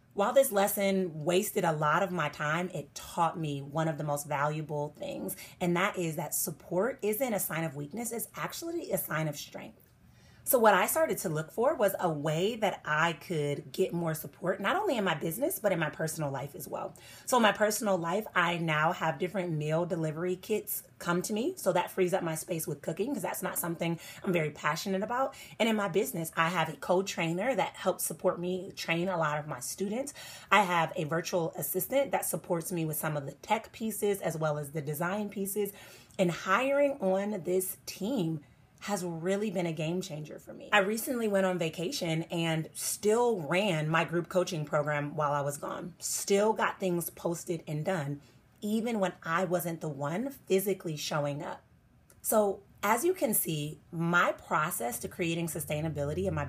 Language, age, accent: English, 30-49, American